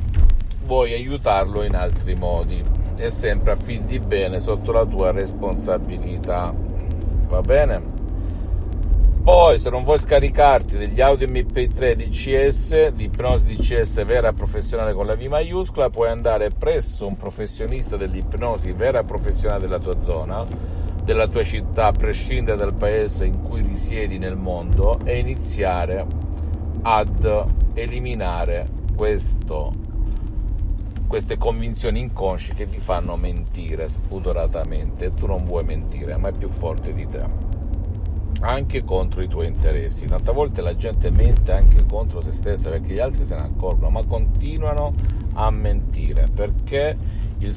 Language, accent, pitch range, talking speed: Italian, native, 80-100 Hz, 130 wpm